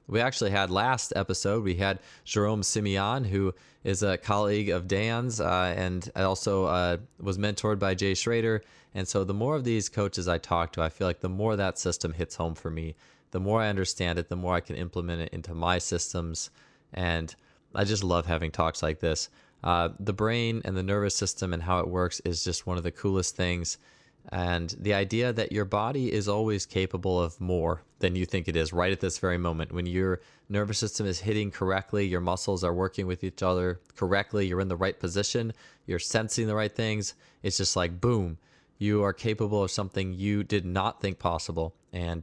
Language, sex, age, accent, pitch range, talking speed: English, male, 20-39, American, 90-105 Hz, 210 wpm